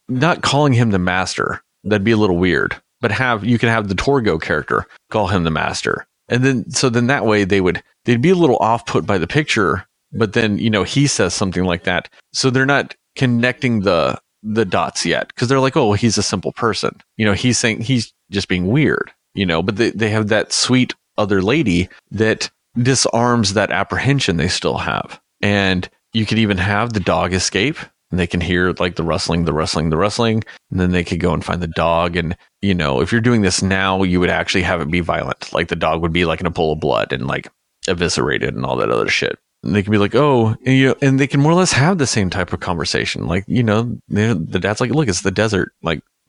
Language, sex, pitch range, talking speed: English, male, 90-120 Hz, 235 wpm